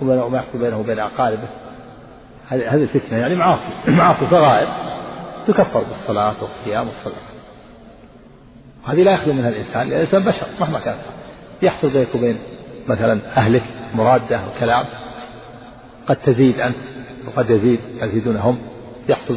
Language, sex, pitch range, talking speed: Arabic, male, 115-130 Hz, 130 wpm